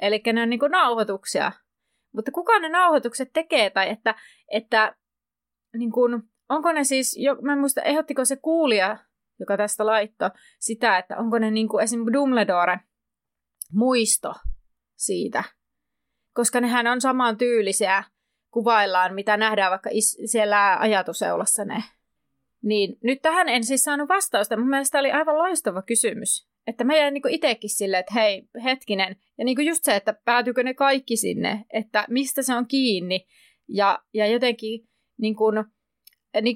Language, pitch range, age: Finnish, 205-255 Hz, 30-49